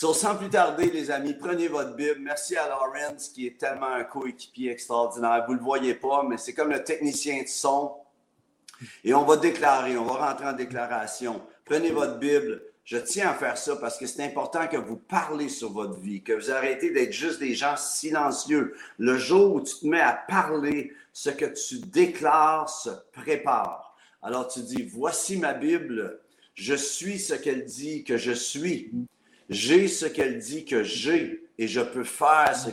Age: 50-69